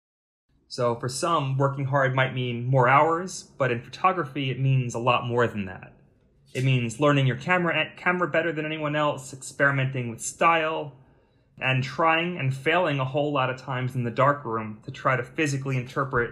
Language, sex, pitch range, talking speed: English, male, 125-150 Hz, 180 wpm